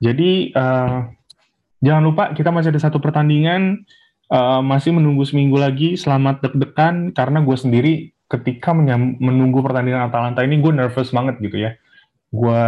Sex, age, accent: male, 20-39, native